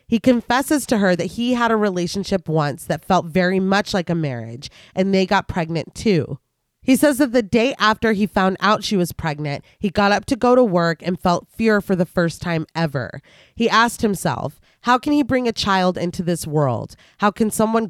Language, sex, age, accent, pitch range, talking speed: English, female, 30-49, American, 165-215 Hz, 215 wpm